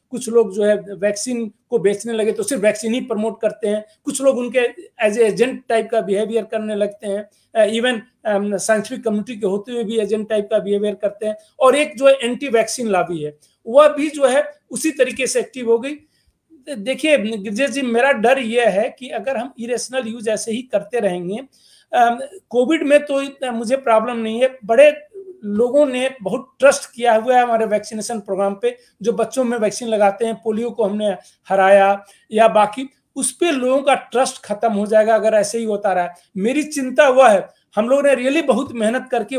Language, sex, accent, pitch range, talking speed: Hindi, male, native, 215-255 Hz, 195 wpm